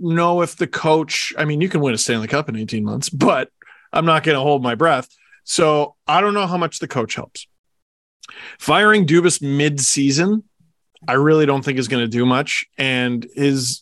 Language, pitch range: English, 130-185 Hz